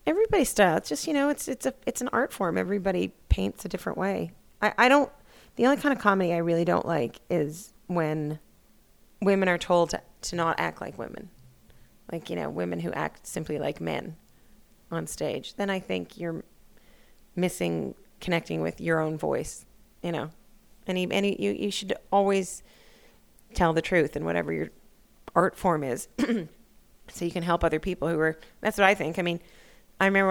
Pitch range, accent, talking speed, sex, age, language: 160-190 Hz, American, 195 wpm, female, 30-49, English